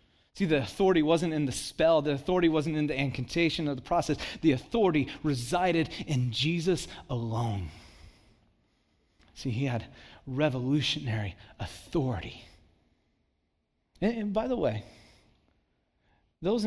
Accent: American